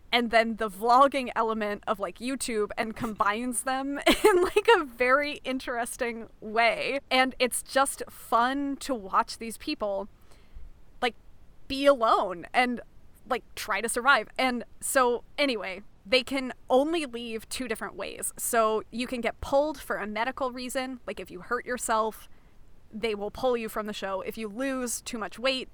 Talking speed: 165 wpm